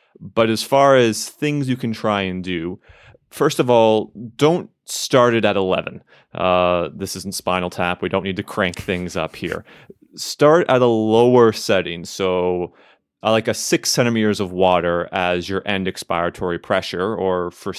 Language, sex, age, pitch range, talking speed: English, male, 30-49, 90-115 Hz, 170 wpm